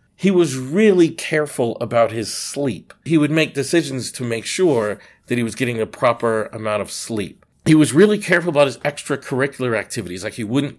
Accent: American